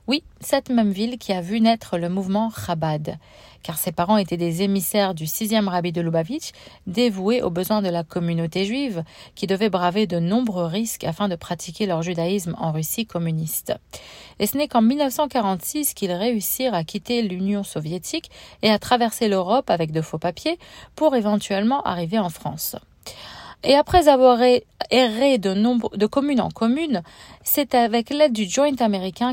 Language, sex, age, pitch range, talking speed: French, female, 40-59, 175-240 Hz, 170 wpm